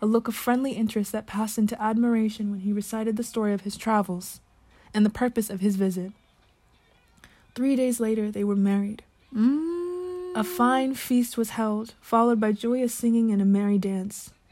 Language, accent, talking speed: English, American, 180 wpm